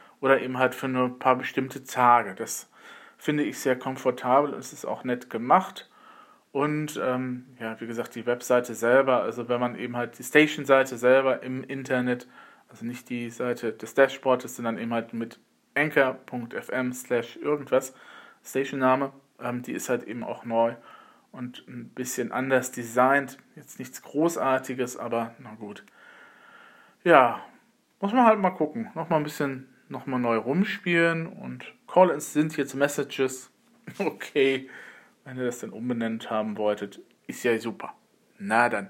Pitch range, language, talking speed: 120-140 Hz, German, 155 wpm